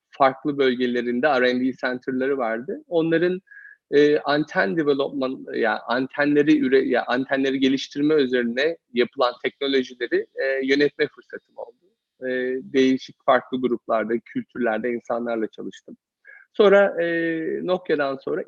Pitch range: 125-170 Hz